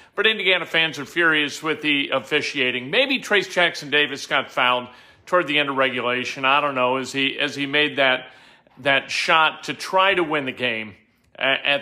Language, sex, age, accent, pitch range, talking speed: English, male, 40-59, American, 145-195 Hz, 185 wpm